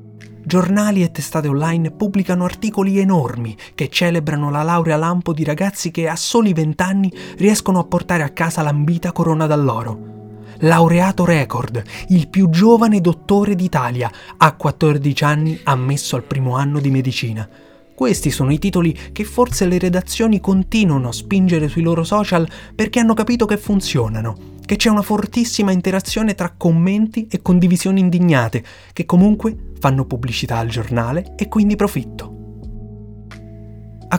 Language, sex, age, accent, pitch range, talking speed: Italian, male, 30-49, native, 135-195 Hz, 140 wpm